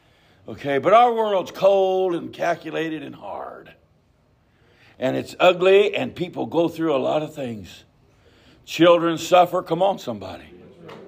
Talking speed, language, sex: 135 wpm, English, male